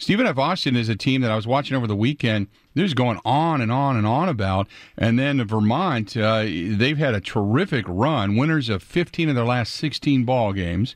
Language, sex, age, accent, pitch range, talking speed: English, male, 50-69, American, 115-145 Hz, 220 wpm